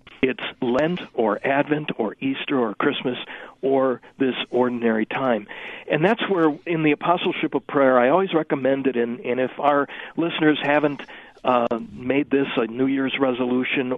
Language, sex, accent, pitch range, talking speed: English, male, American, 120-150 Hz, 150 wpm